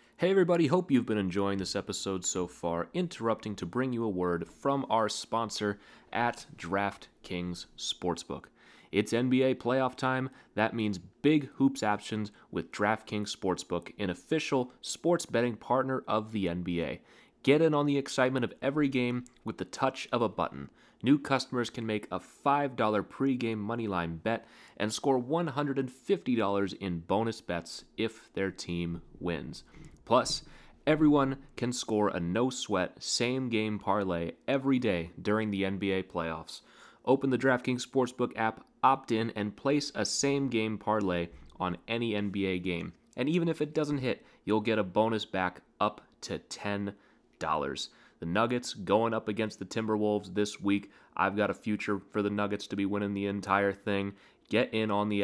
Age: 30-49